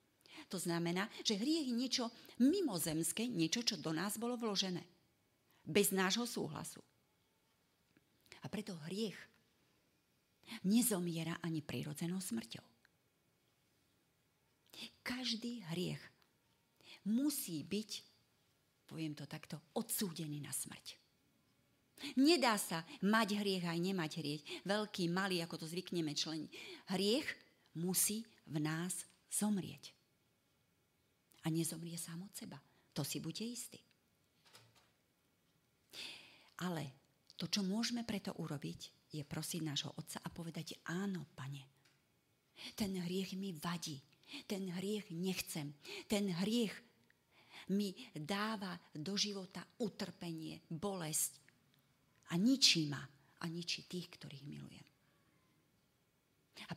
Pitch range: 160-210 Hz